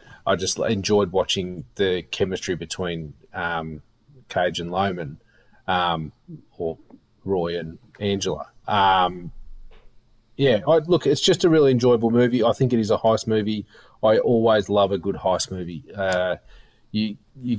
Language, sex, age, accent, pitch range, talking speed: English, male, 30-49, Australian, 90-110 Hz, 145 wpm